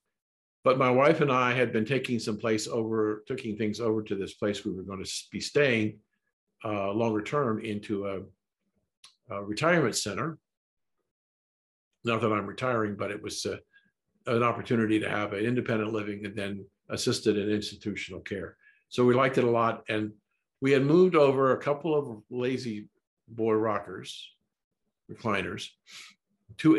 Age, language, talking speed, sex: 50-69, English, 155 wpm, male